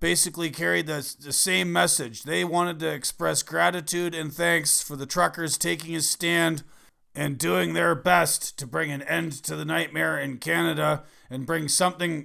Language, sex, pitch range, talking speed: English, male, 145-170 Hz, 170 wpm